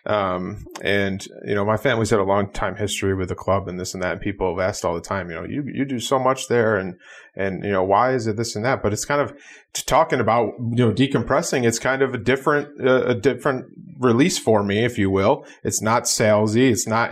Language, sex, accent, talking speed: English, male, American, 245 wpm